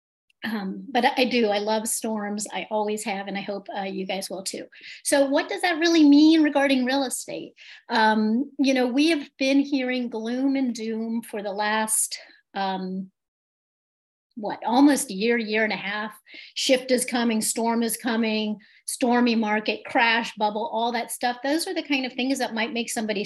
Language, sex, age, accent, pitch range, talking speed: English, female, 40-59, American, 220-275 Hz, 185 wpm